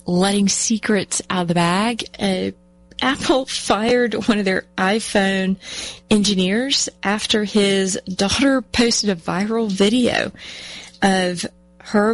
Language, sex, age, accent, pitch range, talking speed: English, female, 30-49, American, 180-235 Hz, 115 wpm